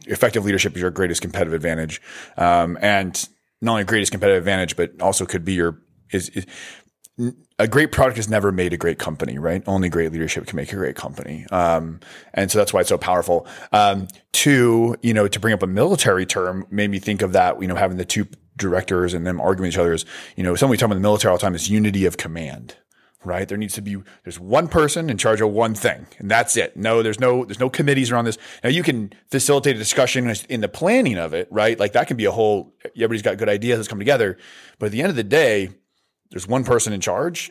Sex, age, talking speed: male, 30-49, 245 wpm